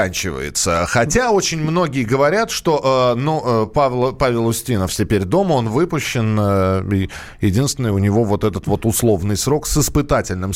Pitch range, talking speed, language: 110-160 Hz, 140 wpm, Russian